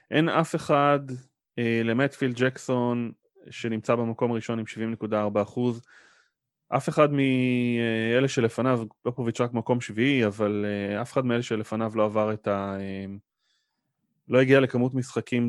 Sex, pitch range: male, 105-135 Hz